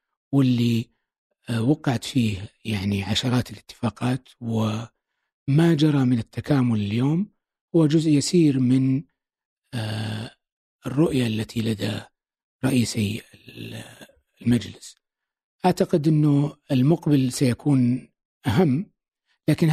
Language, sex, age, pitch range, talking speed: Arabic, male, 60-79, 115-155 Hz, 80 wpm